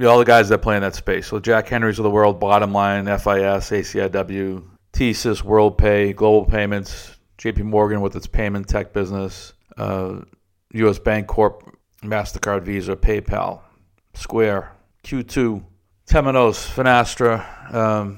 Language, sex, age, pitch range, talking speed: English, male, 50-69, 95-110 Hz, 140 wpm